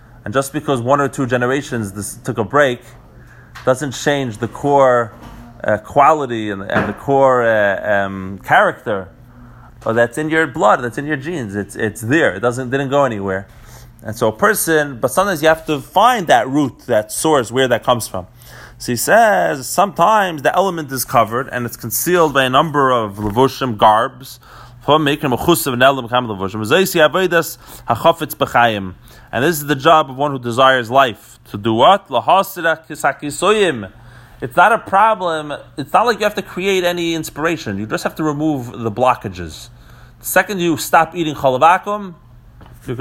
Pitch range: 115-155 Hz